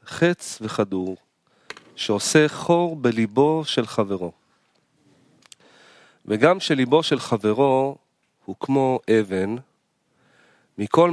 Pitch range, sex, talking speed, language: 105-150 Hz, male, 80 wpm, Hebrew